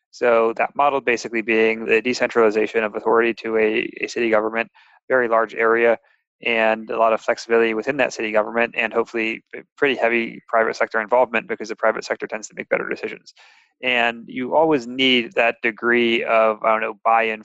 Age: 20-39